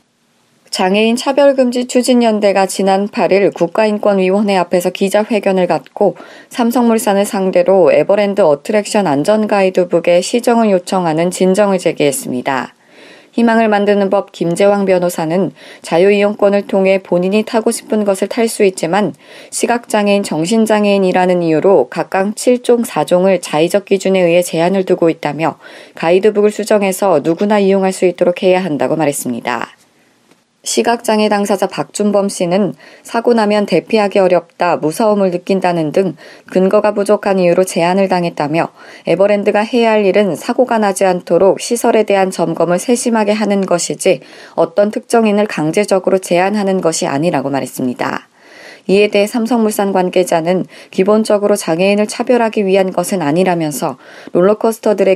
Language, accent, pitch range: Korean, native, 175-210 Hz